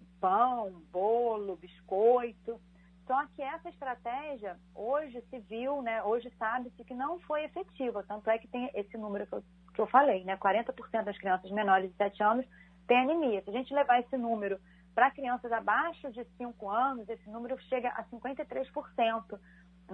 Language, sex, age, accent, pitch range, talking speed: Portuguese, female, 40-59, Brazilian, 200-265 Hz, 165 wpm